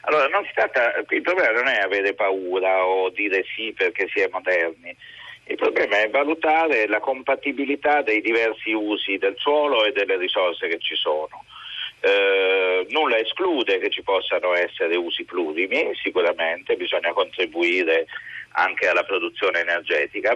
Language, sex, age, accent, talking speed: Italian, male, 50-69, native, 145 wpm